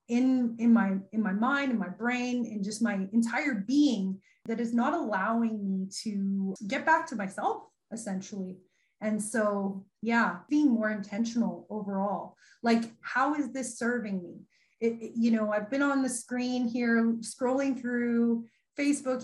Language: English